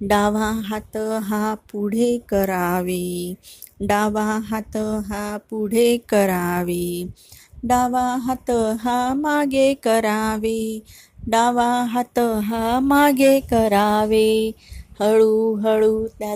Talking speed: 45 wpm